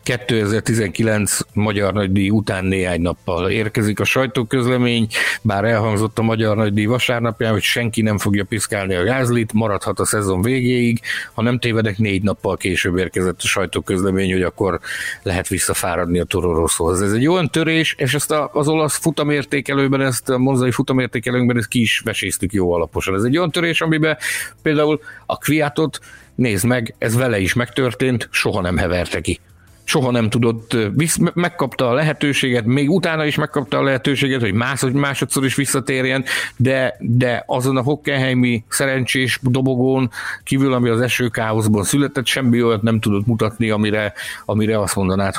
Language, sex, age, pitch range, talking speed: Hungarian, male, 60-79, 105-135 Hz, 155 wpm